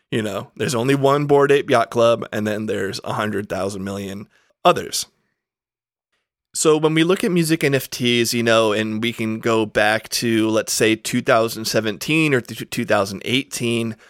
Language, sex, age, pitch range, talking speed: English, male, 30-49, 105-130 Hz, 155 wpm